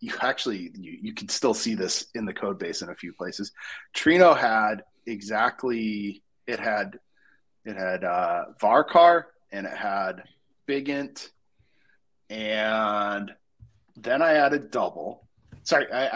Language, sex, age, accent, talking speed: English, male, 30-49, American, 140 wpm